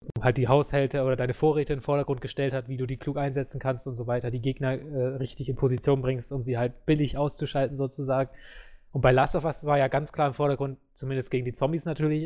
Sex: male